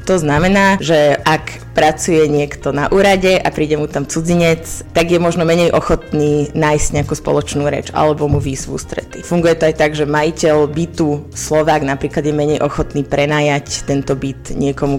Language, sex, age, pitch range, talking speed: Slovak, female, 20-39, 145-165 Hz, 165 wpm